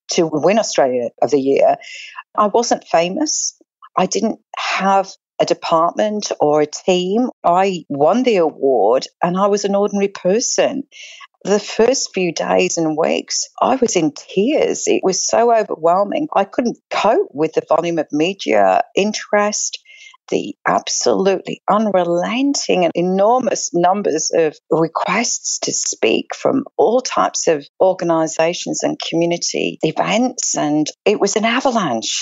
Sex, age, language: female, 50-69, English